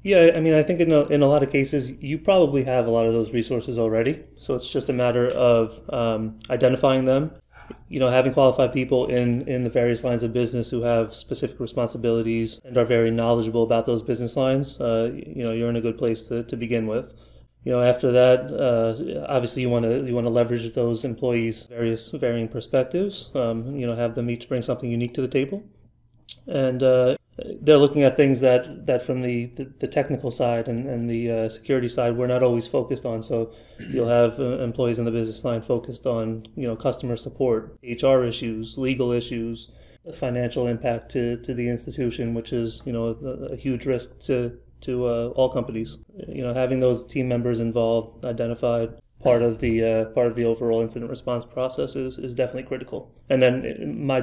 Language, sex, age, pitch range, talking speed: English, male, 30-49, 115-130 Hz, 200 wpm